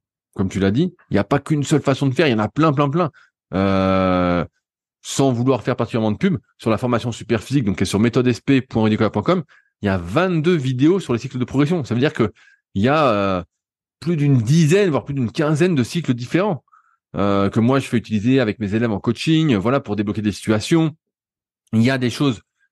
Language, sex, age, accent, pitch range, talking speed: French, male, 20-39, French, 100-135 Hz, 220 wpm